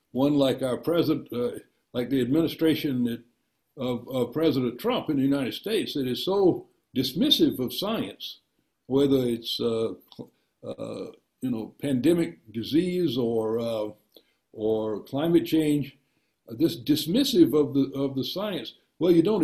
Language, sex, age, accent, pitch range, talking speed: English, male, 60-79, American, 125-165 Hz, 135 wpm